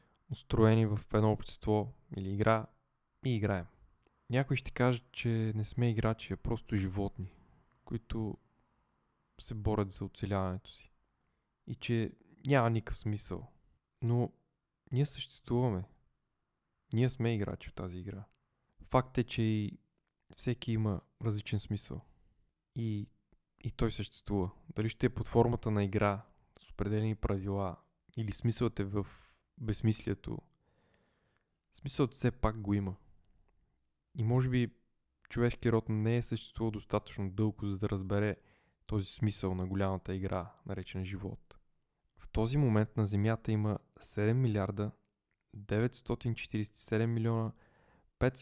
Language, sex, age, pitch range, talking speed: Bulgarian, male, 20-39, 100-120 Hz, 125 wpm